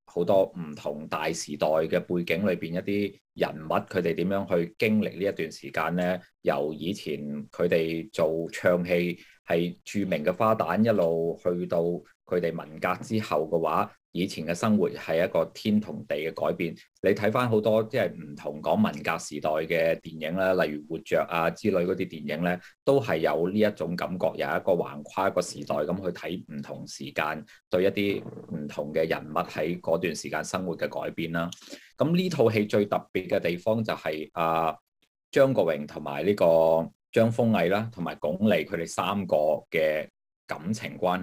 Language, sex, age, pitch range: Chinese, male, 30-49, 80-105 Hz